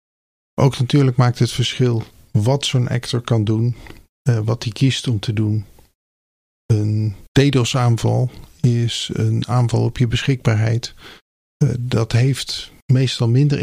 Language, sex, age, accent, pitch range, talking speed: Dutch, male, 50-69, Dutch, 115-135 Hz, 130 wpm